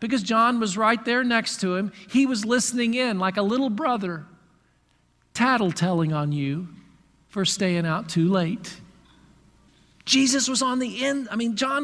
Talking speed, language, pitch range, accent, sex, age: 160 wpm, English, 245-315 Hz, American, male, 40-59